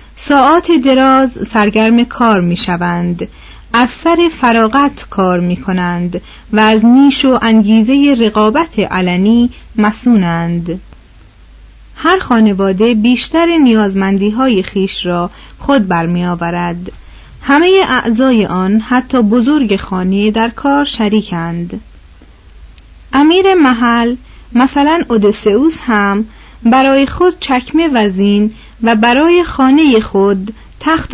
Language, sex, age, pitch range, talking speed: Persian, female, 40-59, 195-275 Hz, 100 wpm